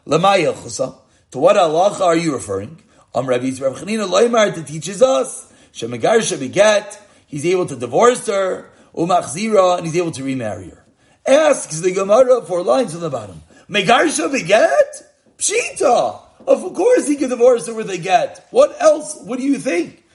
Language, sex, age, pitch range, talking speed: English, male, 40-59, 160-240 Hz, 155 wpm